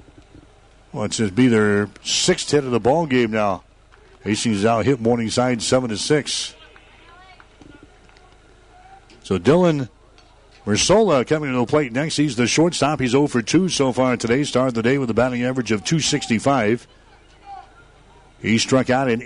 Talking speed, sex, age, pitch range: 160 wpm, male, 60-79, 115-140 Hz